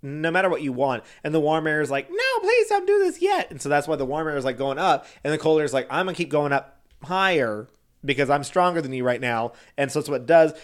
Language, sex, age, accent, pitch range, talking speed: English, male, 30-49, American, 130-160 Hz, 305 wpm